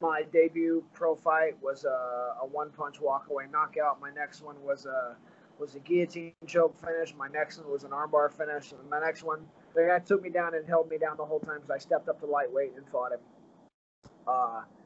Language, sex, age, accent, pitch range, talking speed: English, male, 20-39, American, 150-170 Hz, 215 wpm